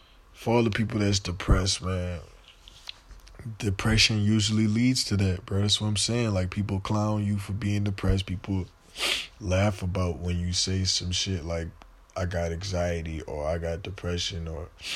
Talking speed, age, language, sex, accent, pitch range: 165 wpm, 20-39, English, male, American, 85-100 Hz